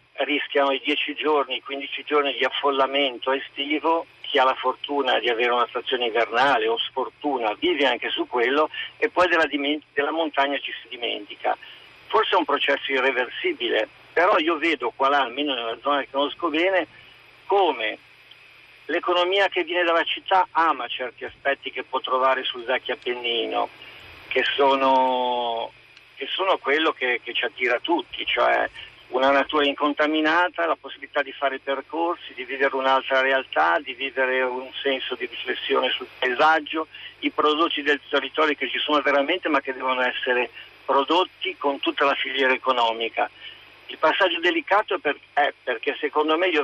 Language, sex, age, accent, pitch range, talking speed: Italian, male, 50-69, native, 130-155 Hz, 155 wpm